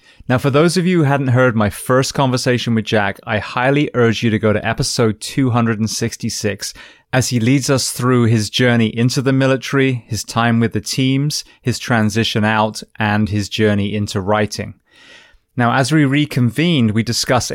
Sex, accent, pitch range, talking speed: male, British, 110-135 Hz, 175 wpm